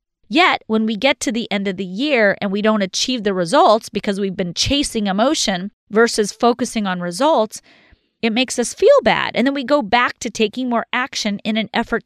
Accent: American